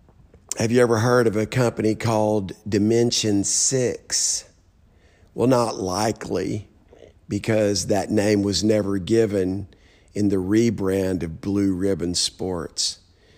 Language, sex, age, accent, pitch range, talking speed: English, male, 50-69, American, 100-120 Hz, 115 wpm